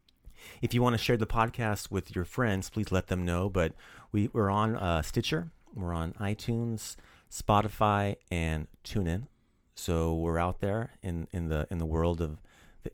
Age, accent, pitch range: 40-59, American, 85-115 Hz